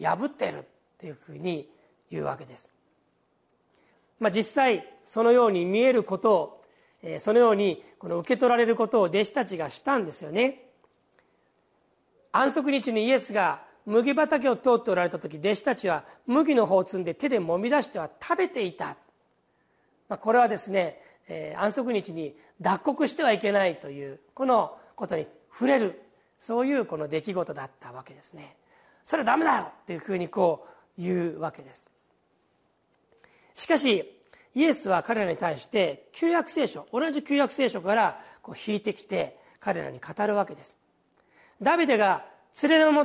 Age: 40-59